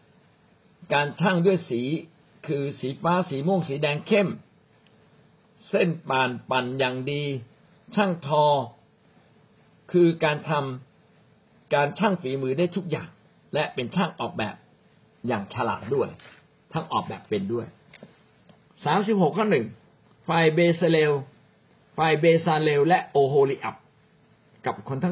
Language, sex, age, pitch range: Thai, male, 60-79, 130-175 Hz